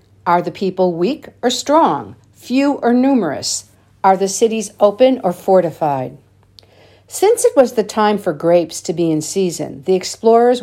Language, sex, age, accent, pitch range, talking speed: English, female, 50-69, American, 160-220 Hz, 160 wpm